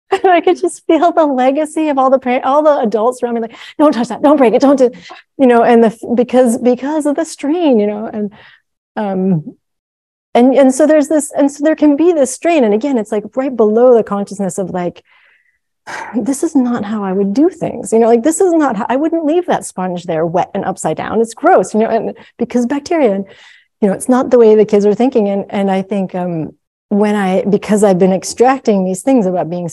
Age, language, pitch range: 30-49, English, 190-265 Hz